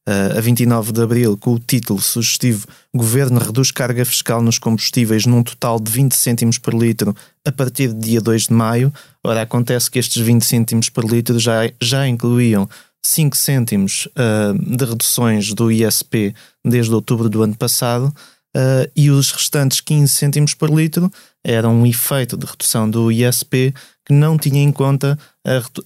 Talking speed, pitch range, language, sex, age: 170 wpm, 115-135 Hz, Portuguese, male, 20-39